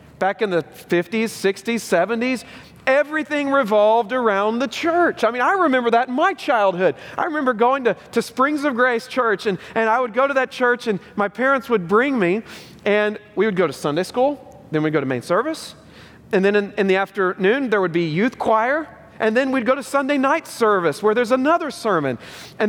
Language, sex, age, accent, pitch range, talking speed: English, male, 40-59, American, 155-255 Hz, 210 wpm